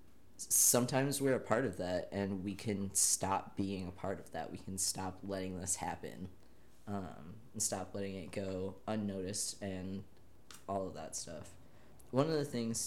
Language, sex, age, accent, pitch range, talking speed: English, male, 20-39, American, 95-115 Hz, 175 wpm